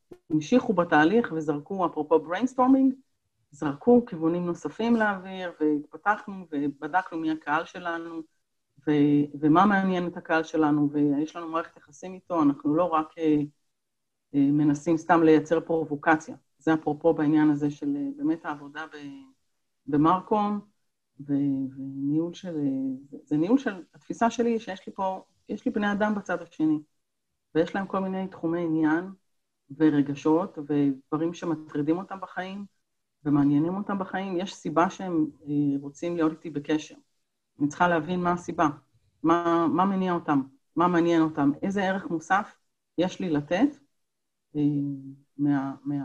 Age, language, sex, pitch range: 40-59, Hebrew, female, 150-190 Hz